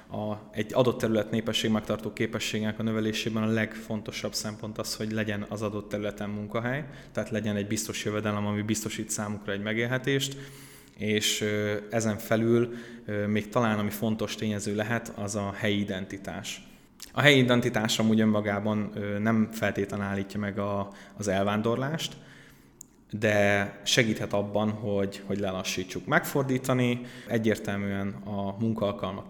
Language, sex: Hungarian, male